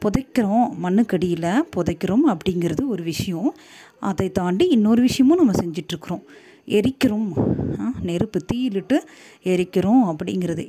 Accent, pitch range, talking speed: native, 180-250 Hz, 95 wpm